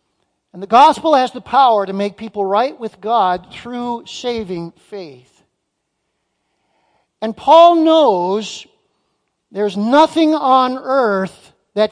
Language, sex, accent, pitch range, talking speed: English, male, American, 175-230 Hz, 115 wpm